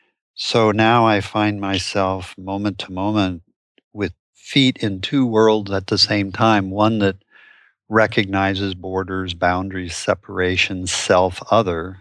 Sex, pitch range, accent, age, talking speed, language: male, 95-105 Hz, American, 50-69, 125 wpm, English